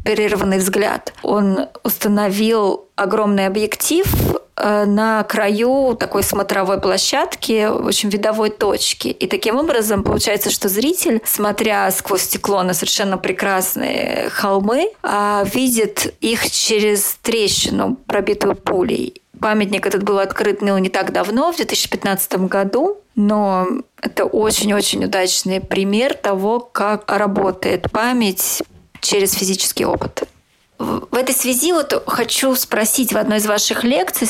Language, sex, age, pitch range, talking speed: Russian, female, 20-39, 200-235 Hz, 115 wpm